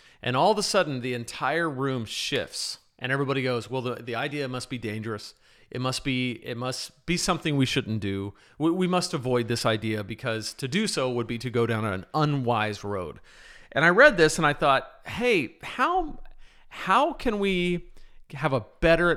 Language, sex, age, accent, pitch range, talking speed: English, male, 40-59, American, 120-150 Hz, 195 wpm